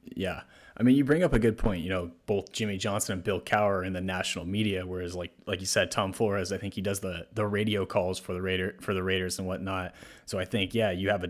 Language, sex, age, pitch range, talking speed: English, male, 20-39, 95-110 Hz, 270 wpm